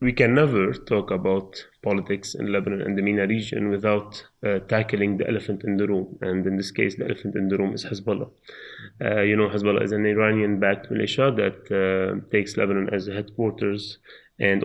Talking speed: 190 wpm